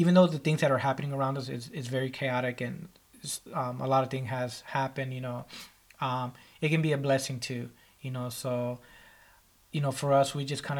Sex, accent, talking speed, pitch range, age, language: male, American, 220 wpm, 125-140 Hz, 20-39, English